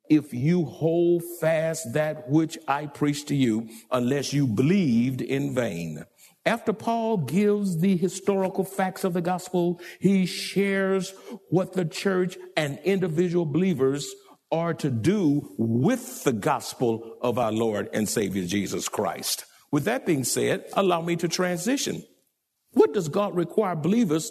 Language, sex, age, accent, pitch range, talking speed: English, male, 60-79, American, 150-210 Hz, 145 wpm